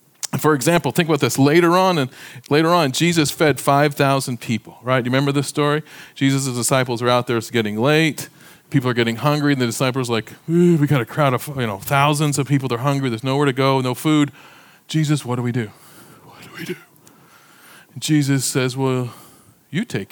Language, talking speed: English, 210 wpm